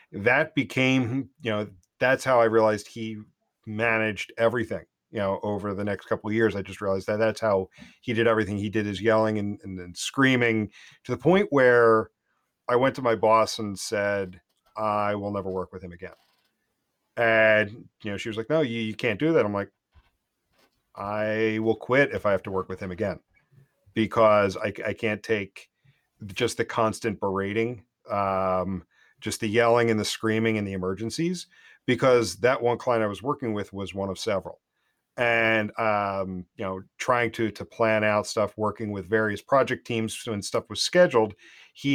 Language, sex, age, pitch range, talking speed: English, male, 40-59, 100-115 Hz, 185 wpm